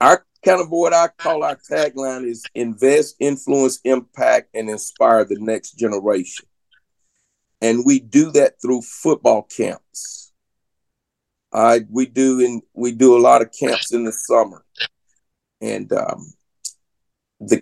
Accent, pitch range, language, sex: American, 115-145 Hz, English, male